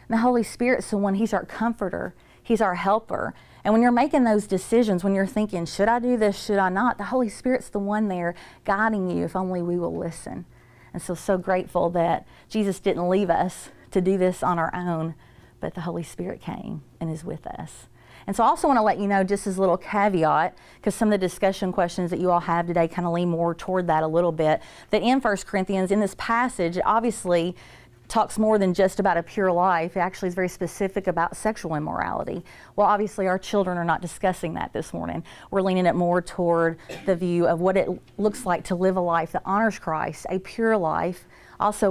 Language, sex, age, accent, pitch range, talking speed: English, female, 30-49, American, 170-205 Hz, 225 wpm